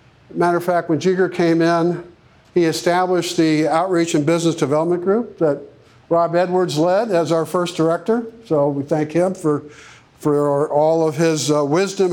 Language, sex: English, male